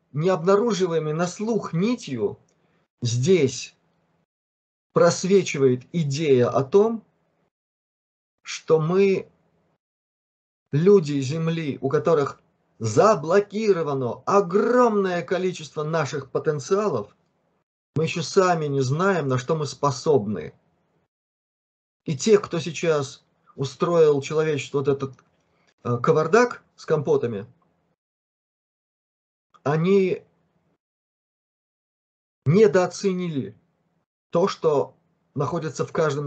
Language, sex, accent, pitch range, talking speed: Russian, male, native, 140-195 Hz, 80 wpm